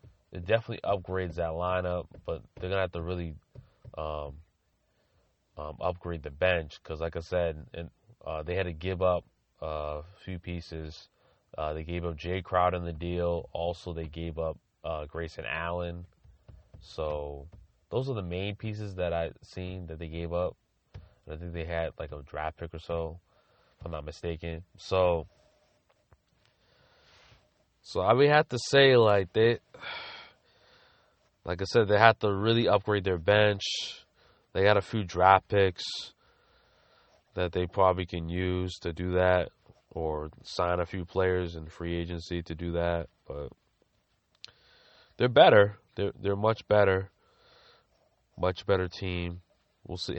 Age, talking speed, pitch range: 20-39, 155 wpm, 80-95 Hz